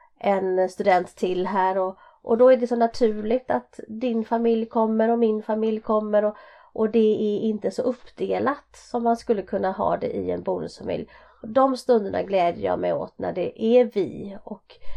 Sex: female